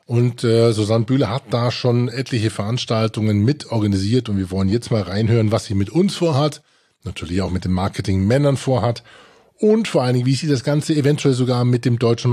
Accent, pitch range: German, 105-130 Hz